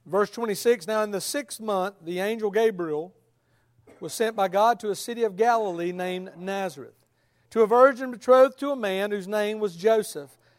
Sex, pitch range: male, 195-240 Hz